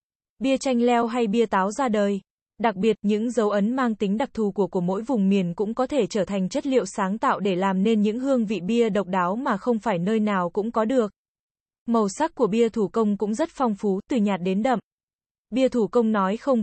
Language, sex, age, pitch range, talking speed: Vietnamese, female, 20-39, 205-240 Hz, 240 wpm